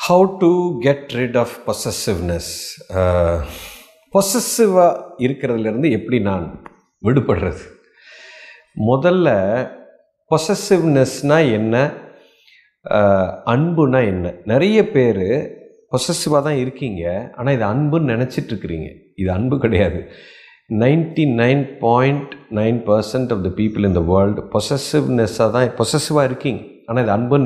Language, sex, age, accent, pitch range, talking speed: Tamil, male, 50-69, native, 115-190 Hz, 100 wpm